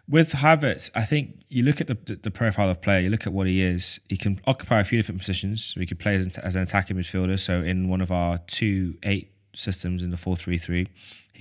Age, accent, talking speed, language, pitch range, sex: 20-39, British, 250 wpm, English, 95-115 Hz, male